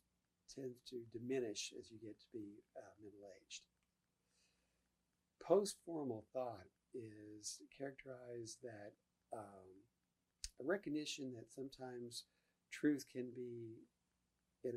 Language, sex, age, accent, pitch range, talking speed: English, male, 50-69, American, 105-135 Hz, 100 wpm